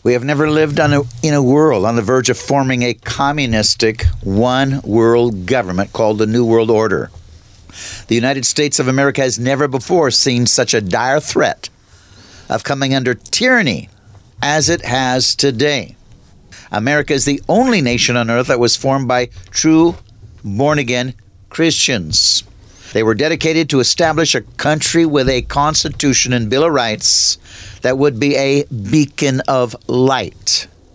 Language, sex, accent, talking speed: English, male, American, 150 wpm